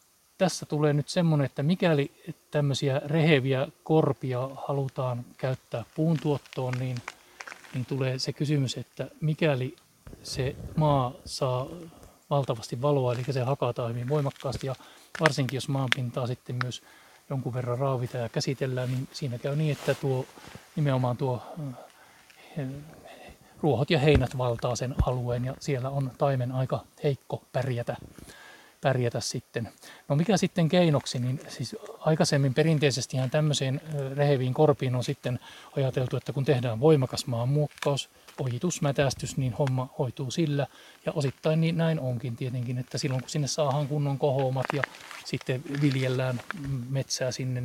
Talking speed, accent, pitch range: 135 wpm, native, 130-150 Hz